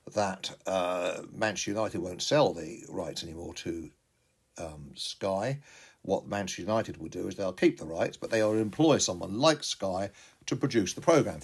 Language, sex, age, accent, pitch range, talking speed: English, male, 60-79, British, 95-115 Hz, 175 wpm